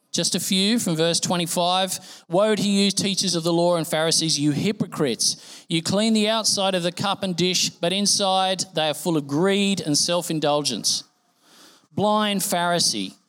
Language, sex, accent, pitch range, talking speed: English, male, Australian, 150-195 Hz, 165 wpm